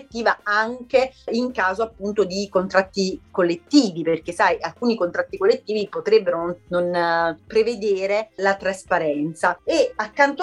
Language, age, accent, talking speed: Italian, 30-49, native, 110 wpm